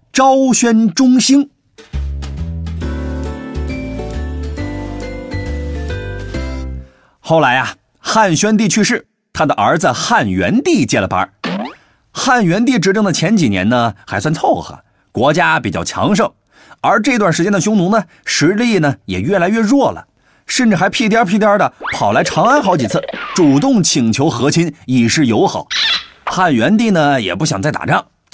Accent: native